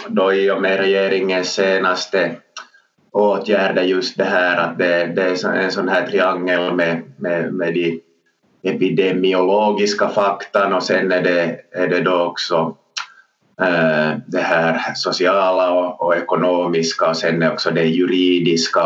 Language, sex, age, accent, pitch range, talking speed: Swedish, male, 30-49, Finnish, 85-105 Hz, 140 wpm